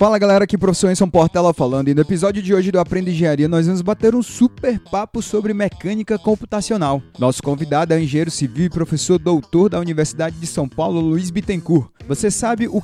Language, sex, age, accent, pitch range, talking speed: Portuguese, male, 20-39, Brazilian, 115-165 Hz, 195 wpm